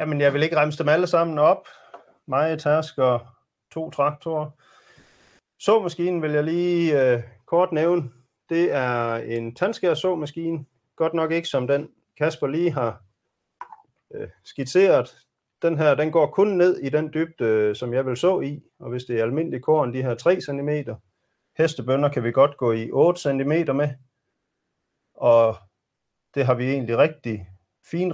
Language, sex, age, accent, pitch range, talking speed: Danish, male, 30-49, native, 120-160 Hz, 160 wpm